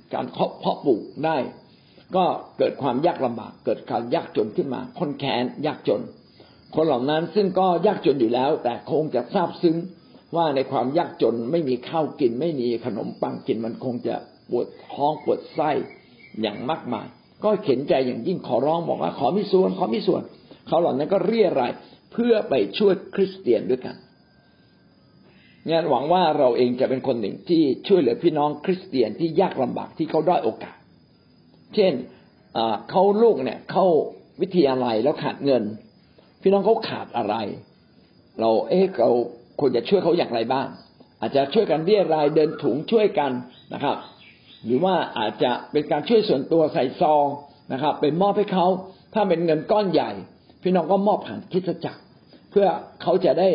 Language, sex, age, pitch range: Thai, male, 60-79, 140-195 Hz